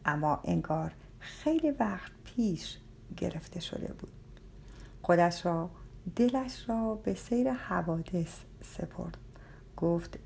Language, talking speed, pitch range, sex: Persian, 100 wpm, 160-235 Hz, female